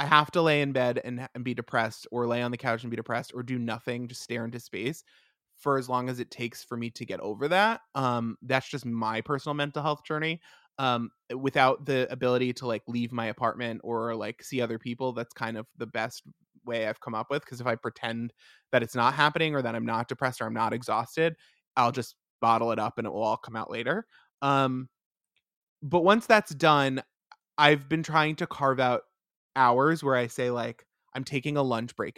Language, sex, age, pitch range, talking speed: English, male, 20-39, 120-145 Hz, 220 wpm